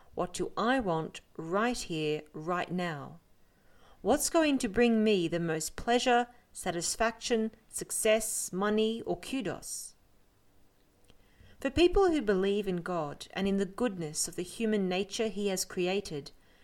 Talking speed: 135 wpm